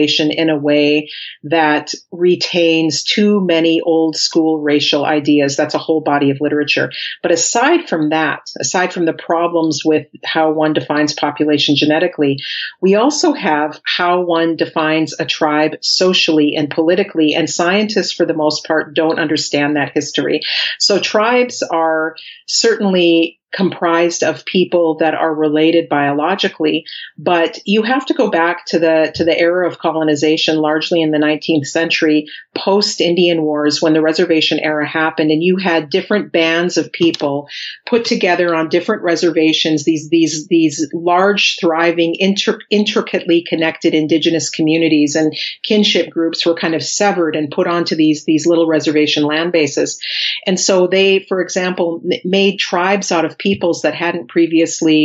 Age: 40-59